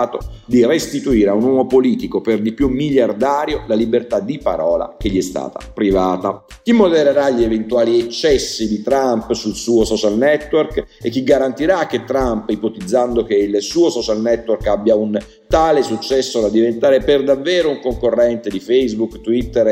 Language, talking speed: Italian, 165 wpm